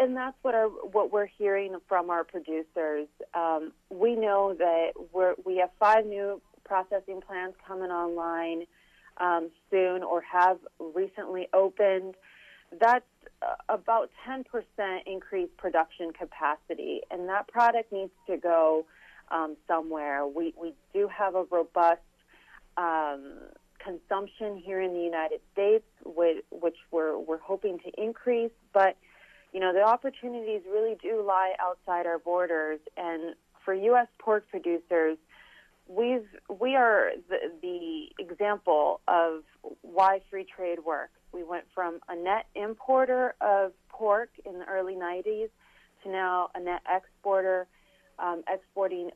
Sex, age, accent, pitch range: female, 30-49, American, 170-205 Hz